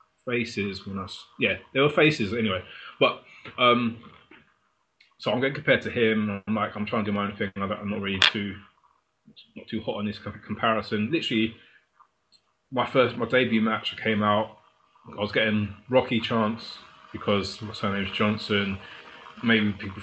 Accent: British